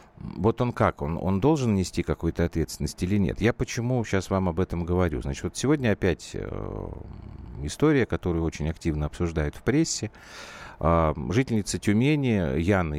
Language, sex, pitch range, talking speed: Russian, male, 80-110 Hz, 150 wpm